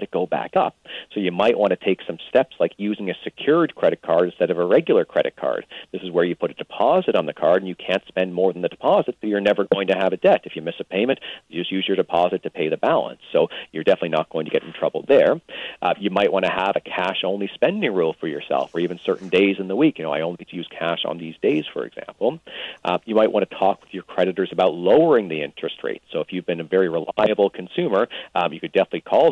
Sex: male